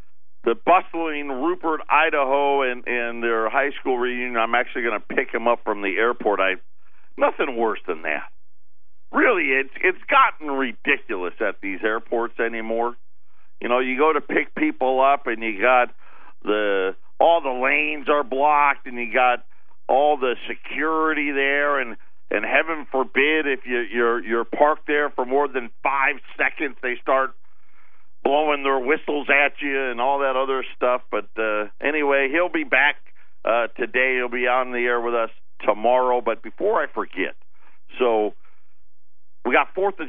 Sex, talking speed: male, 165 wpm